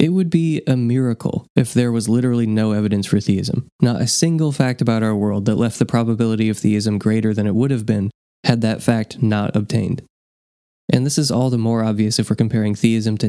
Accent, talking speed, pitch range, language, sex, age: American, 220 wpm, 105-120 Hz, English, male, 20-39